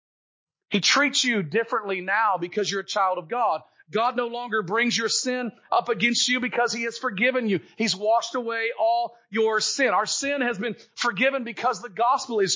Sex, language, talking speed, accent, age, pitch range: male, English, 190 wpm, American, 40-59, 215-290 Hz